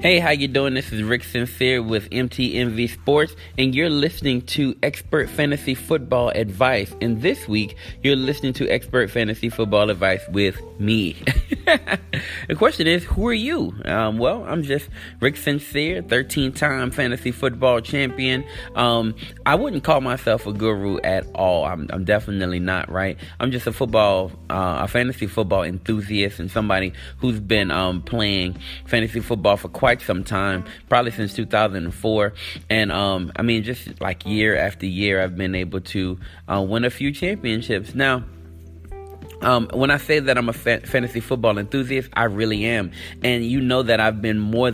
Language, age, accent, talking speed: English, 30-49, American, 170 wpm